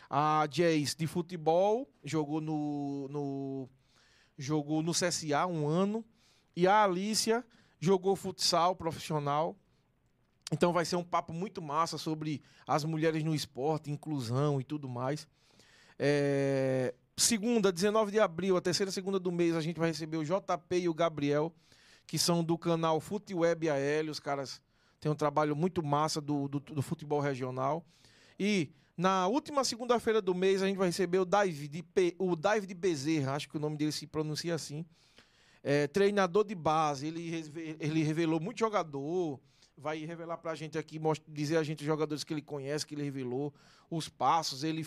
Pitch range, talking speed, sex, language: 150-185 Hz, 170 wpm, male, Portuguese